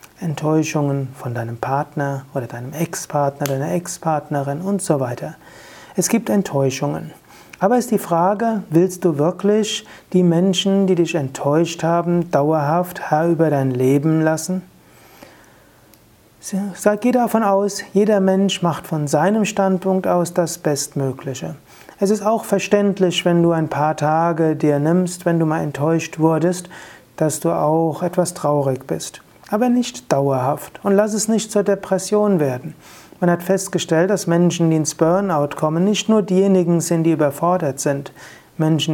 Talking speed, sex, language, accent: 145 wpm, male, German, German